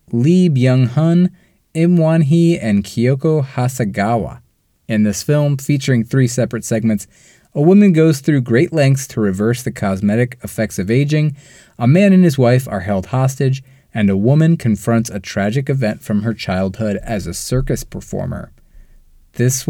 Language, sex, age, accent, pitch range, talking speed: English, male, 20-39, American, 105-140 Hz, 150 wpm